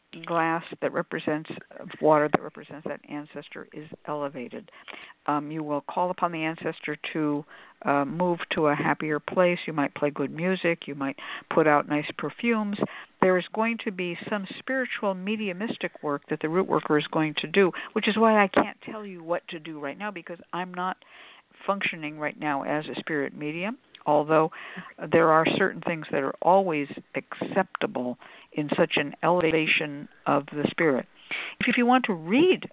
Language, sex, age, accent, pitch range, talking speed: English, female, 60-79, American, 155-205 Hz, 180 wpm